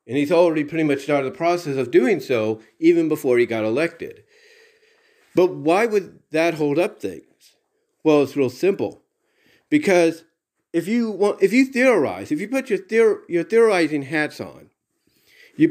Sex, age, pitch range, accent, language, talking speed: male, 40-59, 145-240 Hz, American, English, 170 wpm